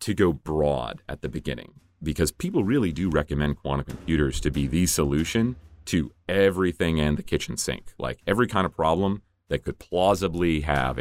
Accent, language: American, English